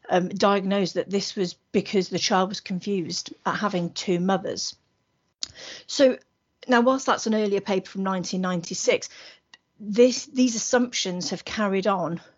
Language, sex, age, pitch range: English, female, 40-59, 180-220 Hz